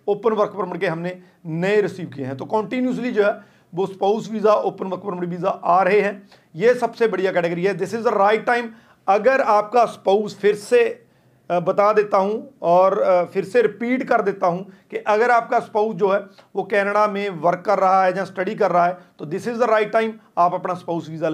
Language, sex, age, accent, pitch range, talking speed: Hindi, male, 40-59, native, 180-225 Hz, 215 wpm